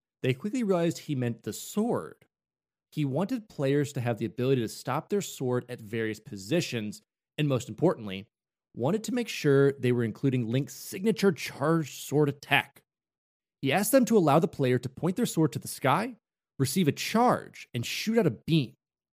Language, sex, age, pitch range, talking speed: English, male, 30-49, 120-175 Hz, 180 wpm